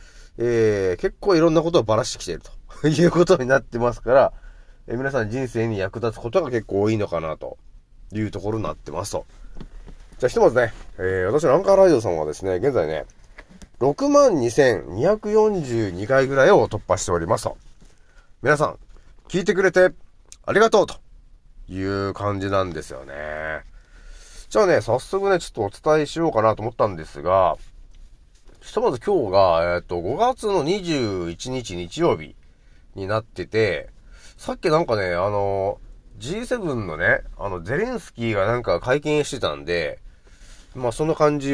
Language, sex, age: Japanese, male, 30-49